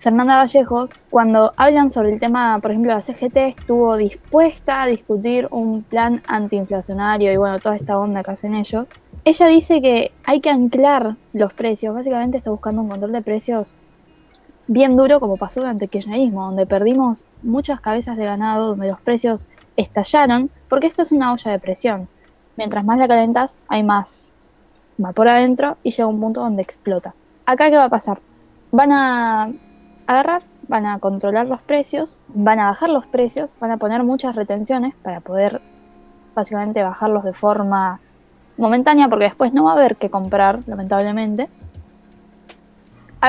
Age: 10-29